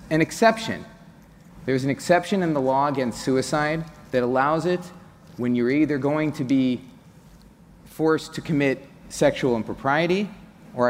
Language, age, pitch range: English, 30-49, 140-185 Hz